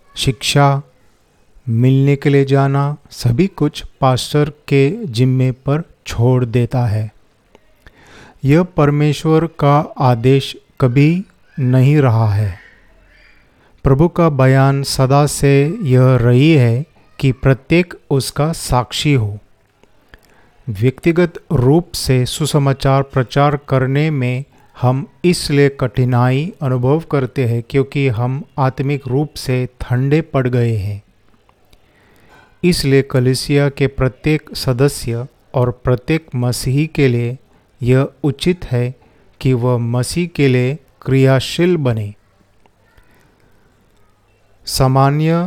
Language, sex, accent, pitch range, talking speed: Hindi, male, native, 120-145 Hz, 105 wpm